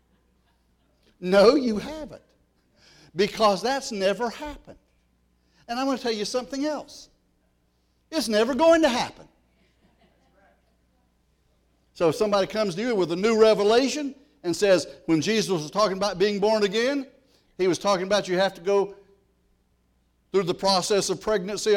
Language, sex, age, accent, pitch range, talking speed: English, male, 60-79, American, 145-220 Hz, 145 wpm